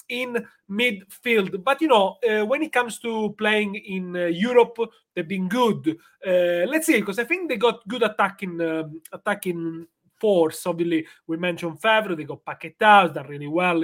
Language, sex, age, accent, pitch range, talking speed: English, male, 30-49, Italian, 175-220 Hz, 175 wpm